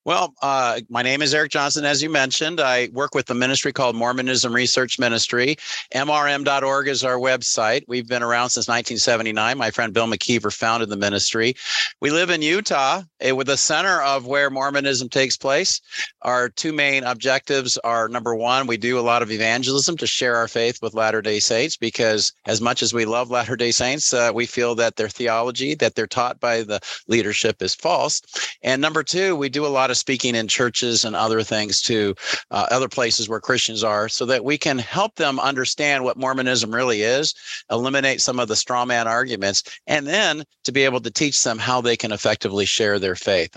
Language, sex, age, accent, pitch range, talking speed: English, male, 50-69, American, 115-135 Hz, 195 wpm